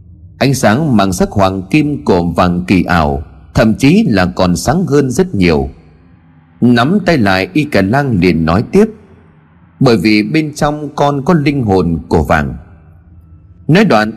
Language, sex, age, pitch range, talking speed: Vietnamese, male, 30-49, 90-140 Hz, 165 wpm